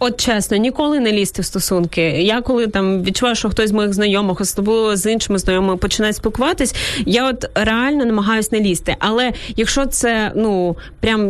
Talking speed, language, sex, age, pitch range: 165 wpm, Ukrainian, female, 20-39, 205-245 Hz